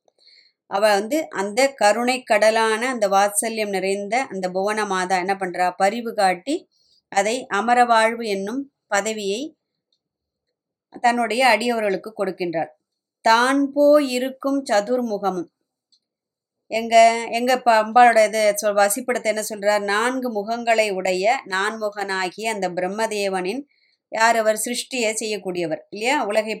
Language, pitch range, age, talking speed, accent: Tamil, 200-240 Hz, 20-39, 105 wpm, native